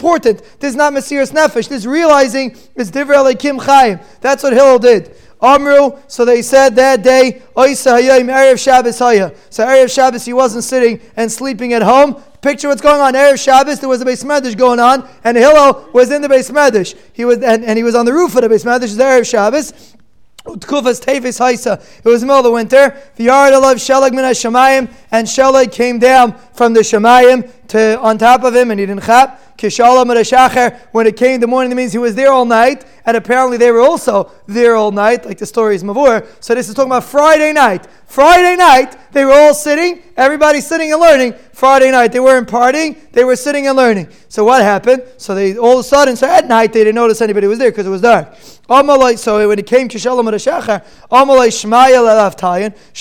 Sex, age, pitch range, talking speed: male, 20-39, 235-270 Hz, 195 wpm